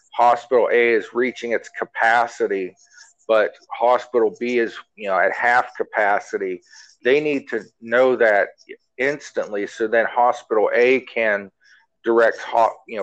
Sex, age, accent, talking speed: male, 40-59, American, 130 wpm